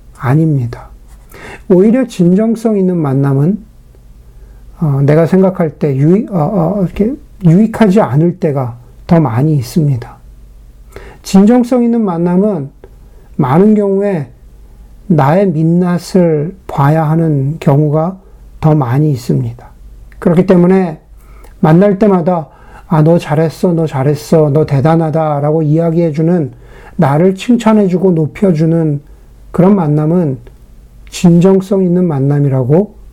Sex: male